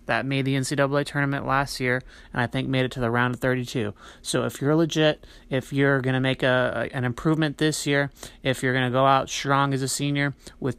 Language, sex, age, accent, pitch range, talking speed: English, male, 30-49, American, 125-140 Hz, 230 wpm